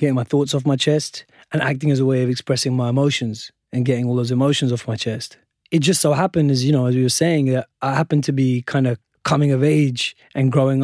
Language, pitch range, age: English, 125-150 Hz, 20-39